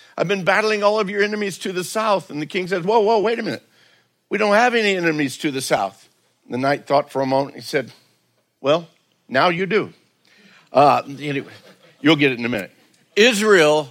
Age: 60-79